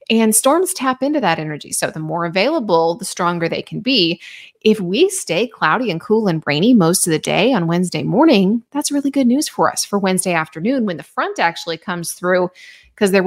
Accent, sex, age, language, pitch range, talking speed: American, female, 30-49, English, 165-225 Hz, 215 wpm